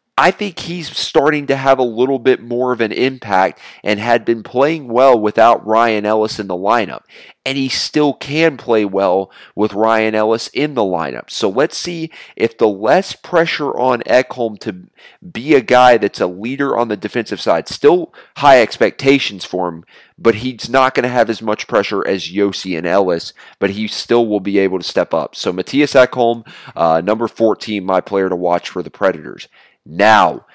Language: English